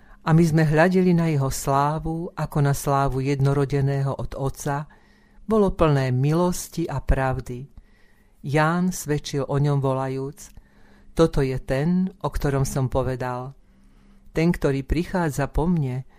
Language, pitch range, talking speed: Slovak, 130-155 Hz, 130 wpm